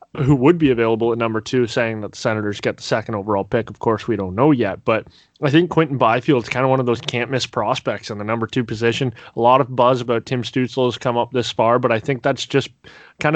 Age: 20-39